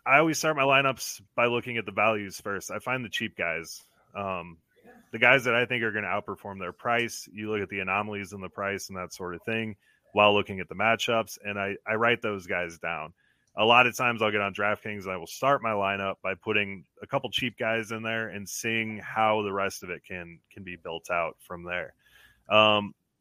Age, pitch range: 30-49, 100-115 Hz